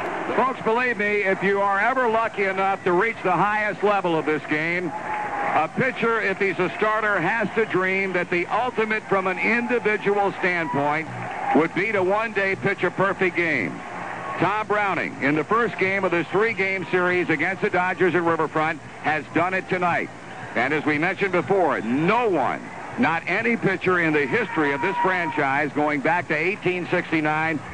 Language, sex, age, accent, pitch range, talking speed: English, male, 60-79, American, 155-195 Hz, 175 wpm